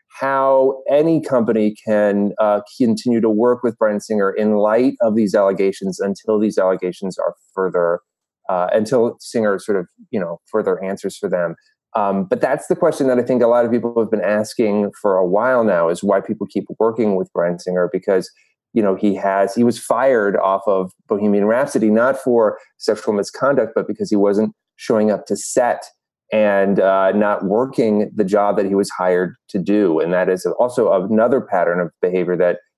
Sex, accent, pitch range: male, American, 100-125 Hz